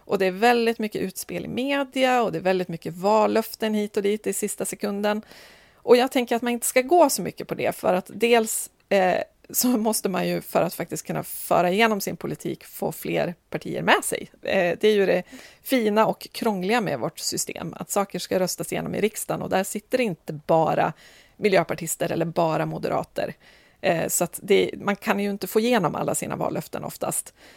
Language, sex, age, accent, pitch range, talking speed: Swedish, female, 30-49, native, 180-235 Hz, 195 wpm